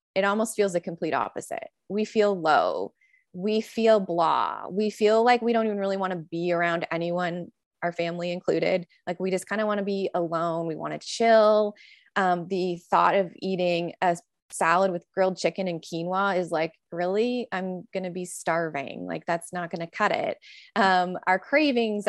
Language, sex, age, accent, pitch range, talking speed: English, female, 20-39, American, 175-215 Hz, 190 wpm